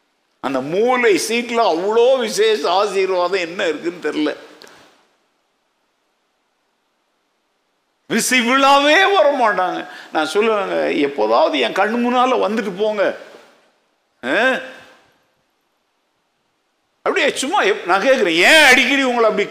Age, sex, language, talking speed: 60-79, male, Tamil, 80 wpm